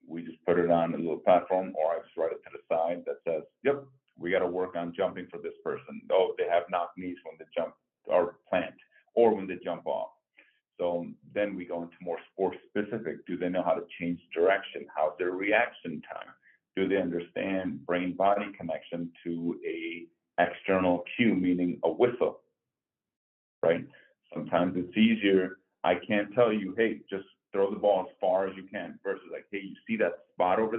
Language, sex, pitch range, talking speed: English, male, 90-115 Hz, 195 wpm